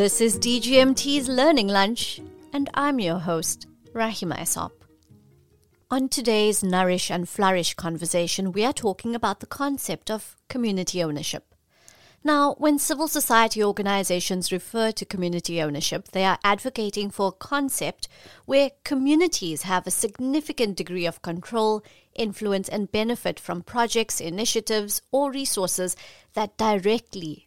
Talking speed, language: 130 wpm, English